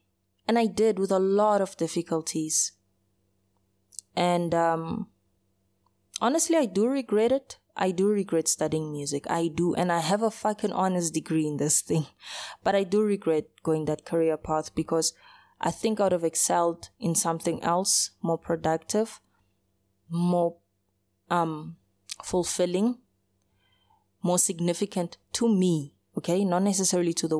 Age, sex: 20-39, female